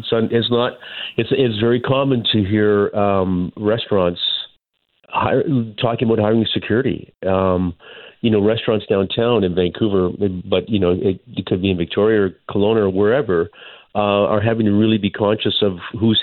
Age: 40-59